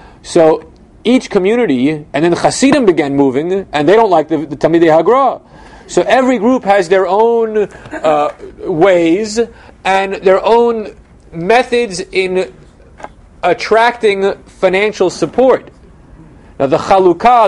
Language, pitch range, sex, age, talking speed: English, 160-225 Hz, male, 40-59, 125 wpm